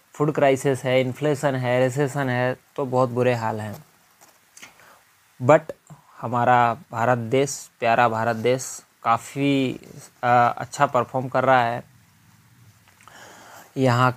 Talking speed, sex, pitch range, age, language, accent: 110 wpm, male, 130-165 Hz, 20-39, English, Indian